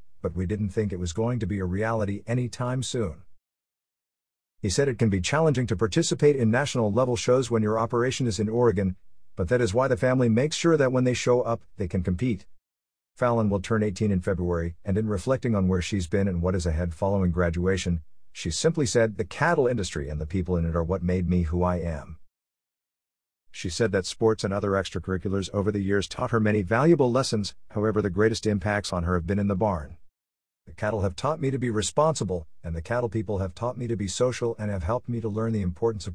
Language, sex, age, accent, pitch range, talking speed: English, male, 50-69, American, 90-120 Hz, 225 wpm